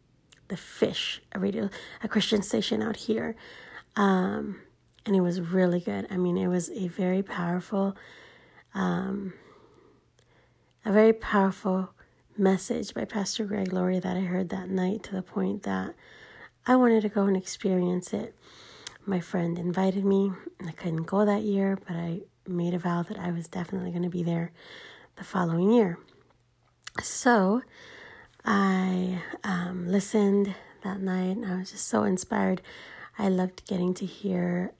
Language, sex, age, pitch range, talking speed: English, female, 30-49, 180-210 Hz, 155 wpm